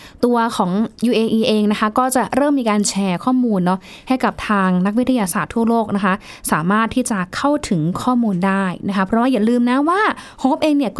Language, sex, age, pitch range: Thai, female, 20-39, 195-255 Hz